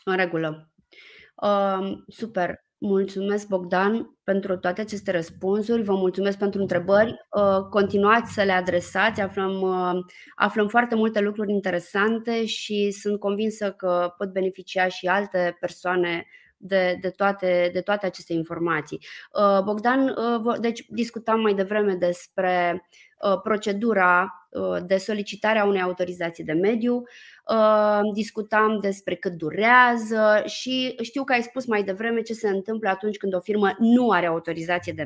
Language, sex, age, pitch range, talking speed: Romanian, female, 20-39, 185-225 Hz, 125 wpm